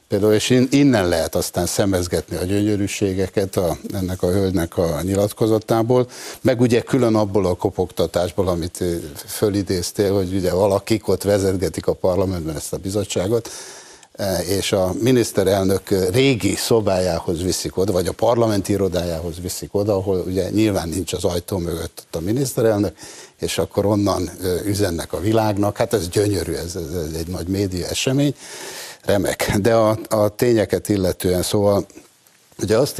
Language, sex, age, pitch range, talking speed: Hungarian, male, 60-79, 90-105 Hz, 145 wpm